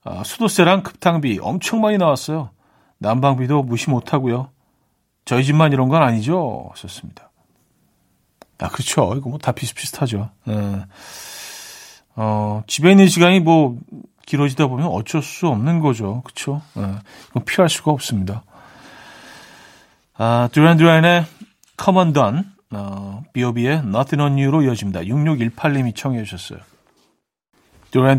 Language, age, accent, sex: Korean, 40-59, native, male